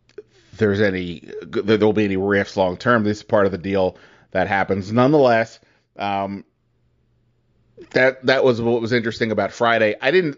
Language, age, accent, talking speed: English, 30-49, American, 170 wpm